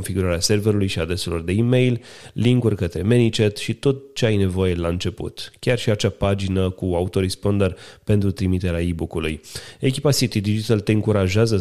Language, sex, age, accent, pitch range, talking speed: Romanian, male, 30-49, native, 95-110 Hz, 155 wpm